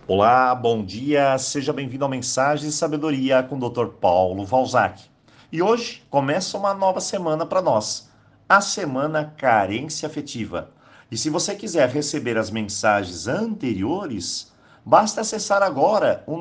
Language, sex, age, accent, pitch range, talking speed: Portuguese, male, 50-69, Brazilian, 125-190 Hz, 140 wpm